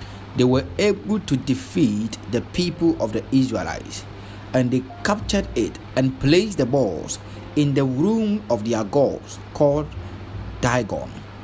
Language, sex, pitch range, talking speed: English, male, 100-145 Hz, 135 wpm